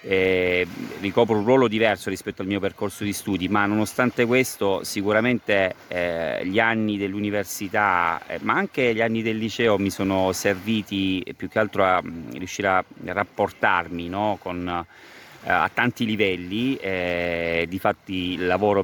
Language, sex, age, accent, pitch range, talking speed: Italian, male, 30-49, native, 90-105 Hz, 145 wpm